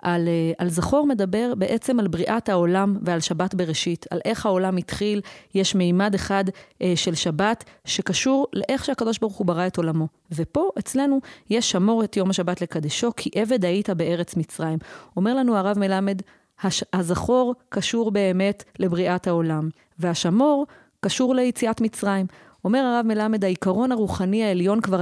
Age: 30-49